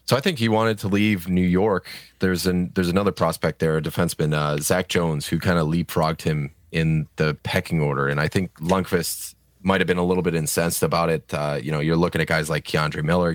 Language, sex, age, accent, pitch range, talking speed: English, male, 20-39, American, 80-95 Hz, 230 wpm